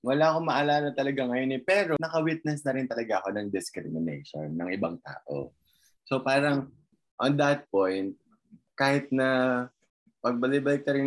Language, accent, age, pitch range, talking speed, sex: Filipino, native, 20-39, 105-135 Hz, 145 wpm, male